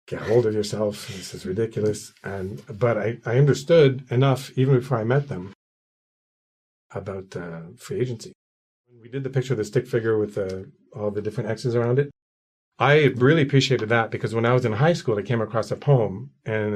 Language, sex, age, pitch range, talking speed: English, male, 40-59, 100-125 Hz, 195 wpm